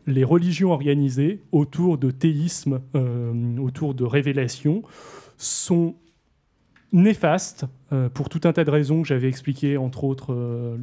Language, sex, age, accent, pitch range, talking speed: French, male, 30-49, French, 135-160 Hz, 140 wpm